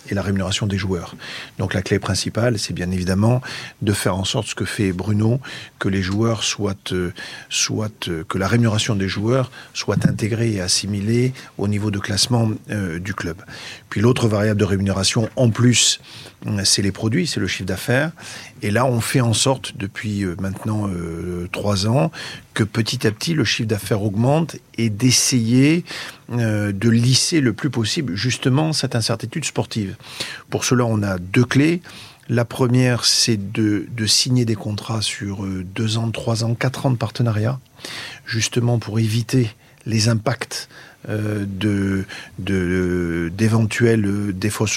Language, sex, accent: French, male, French